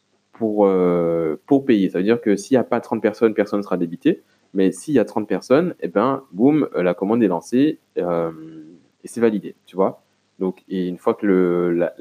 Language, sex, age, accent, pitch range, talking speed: French, male, 20-39, French, 90-120 Hz, 220 wpm